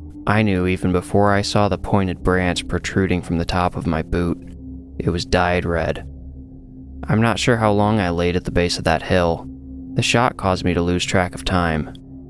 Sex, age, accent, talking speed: male, 20-39, American, 205 wpm